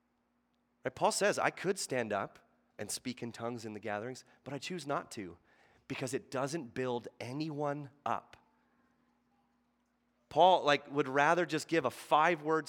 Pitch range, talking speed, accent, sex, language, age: 125-160 Hz, 155 wpm, American, male, English, 30-49